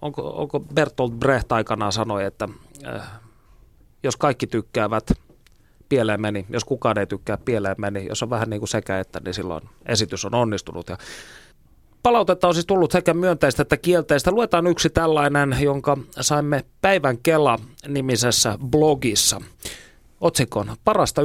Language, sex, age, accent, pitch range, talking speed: Finnish, male, 30-49, native, 115-145 Hz, 140 wpm